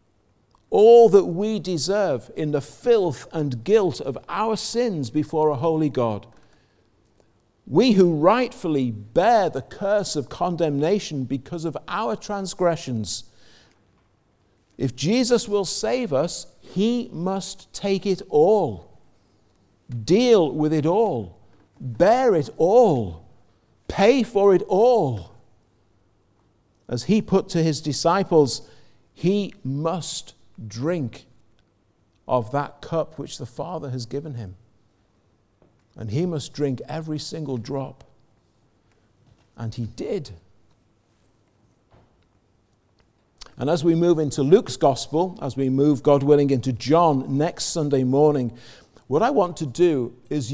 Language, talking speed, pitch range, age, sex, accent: English, 120 wpm, 115-170 Hz, 50-69, male, British